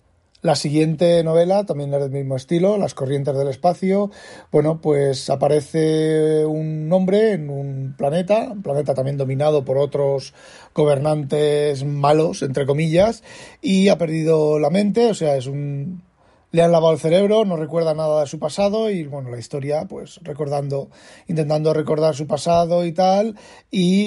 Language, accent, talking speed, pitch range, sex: Spanish, Spanish, 155 wpm, 145-170 Hz, male